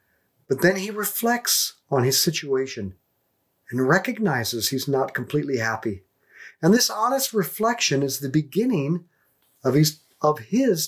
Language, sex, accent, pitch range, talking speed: English, male, American, 125-185 Hz, 125 wpm